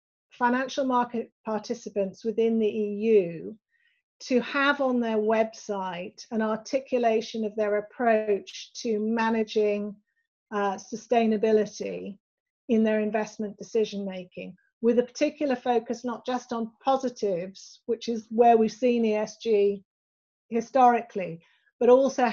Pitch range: 210-245 Hz